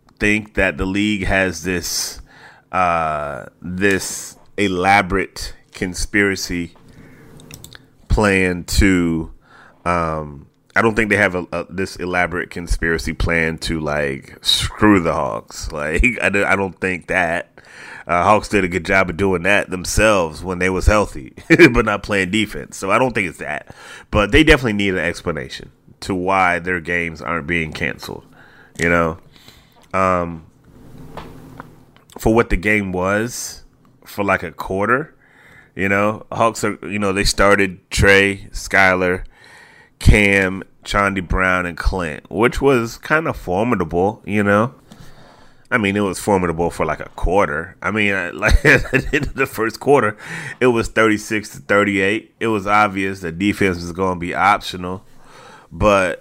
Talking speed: 145 wpm